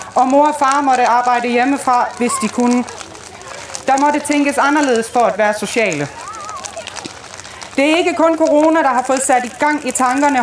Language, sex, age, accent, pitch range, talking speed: Danish, female, 30-49, native, 245-295 Hz, 180 wpm